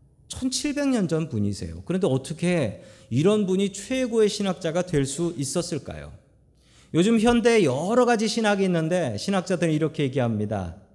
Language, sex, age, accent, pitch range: Korean, male, 40-59, native, 120-205 Hz